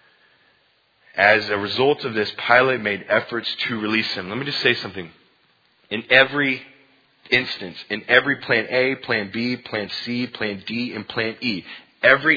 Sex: male